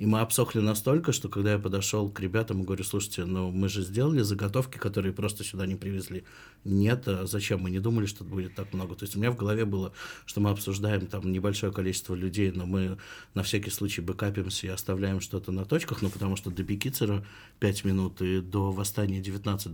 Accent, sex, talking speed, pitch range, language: native, male, 215 wpm, 95-105 Hz, Russian